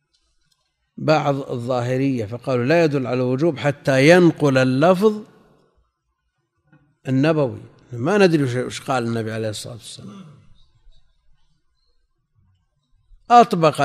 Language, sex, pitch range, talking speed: Arabic, male, 125-165 Hz, 85 wpm